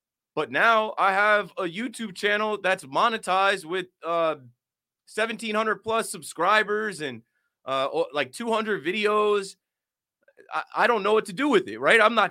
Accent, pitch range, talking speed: American, 145-195 Hz, 150 wpm